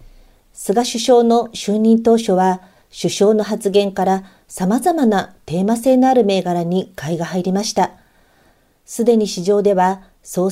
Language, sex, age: Japanese, female, 50-69